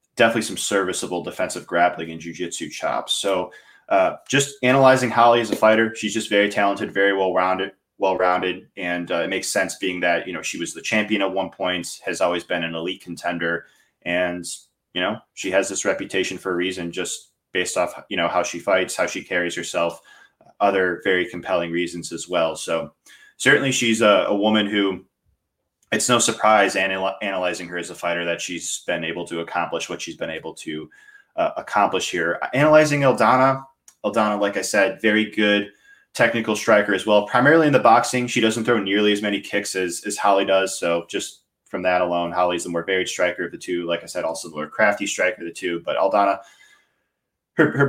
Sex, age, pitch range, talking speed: male, 20-39, 90-120 Hz, 200 wpm